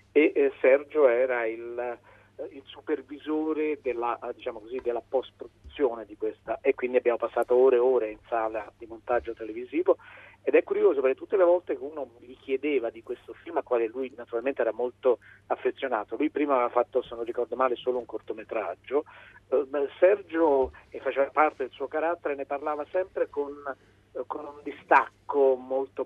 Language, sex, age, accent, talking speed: Italian, male, 40-59, native, 165 wpm